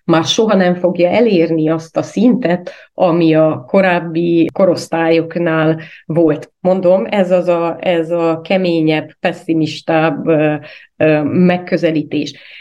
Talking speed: 95 wpm